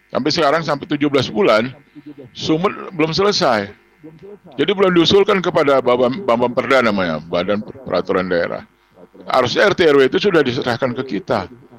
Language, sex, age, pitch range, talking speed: Indonesian, male, 60-79, 115-170 Hz, 120 wpm